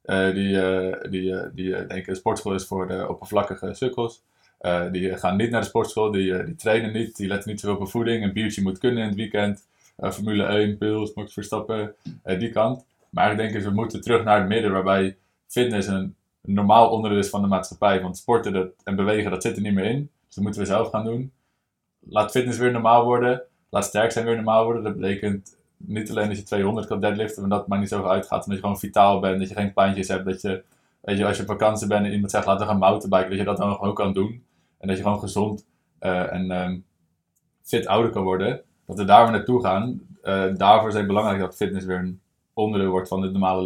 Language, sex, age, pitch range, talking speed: Dutch, male, 20-39, 95-105 Hz, 245 wpm